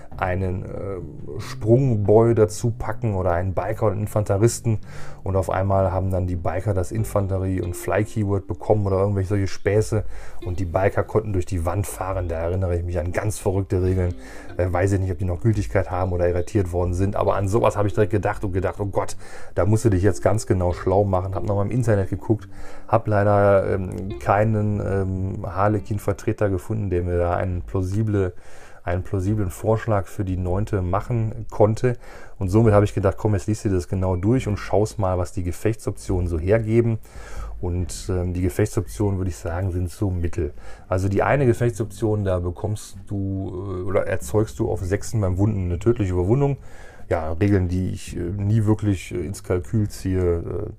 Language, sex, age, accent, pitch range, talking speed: German, male, 30-49, German, 90-105 Hz, 190 wpm